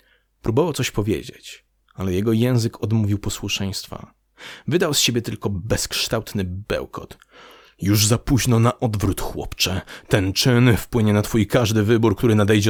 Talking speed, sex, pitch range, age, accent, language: 135 wpm, male, 100-125 Hz, 30-49, native, Polish